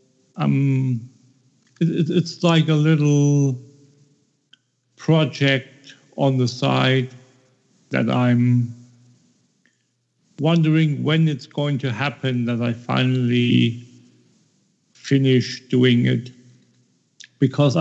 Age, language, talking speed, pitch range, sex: 50-69, English, 80 wpm, 130-155 Hz, male